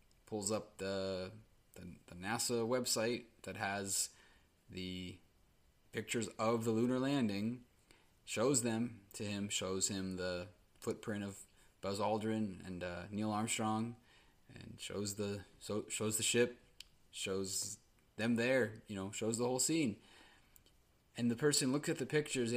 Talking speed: 140 wpm